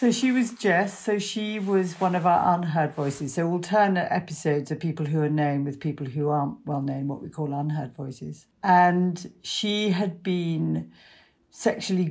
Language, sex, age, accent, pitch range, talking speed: English, female, 50-69, British, 150-185 Hz, 185 wpm